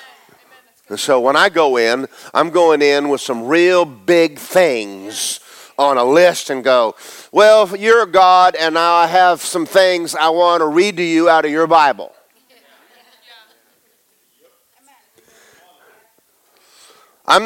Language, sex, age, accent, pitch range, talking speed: English, male, 50-69, American, 155-195 Hz, 135 wpm